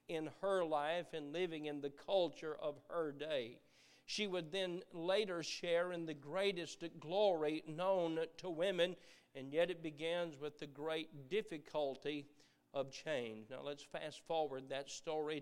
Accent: American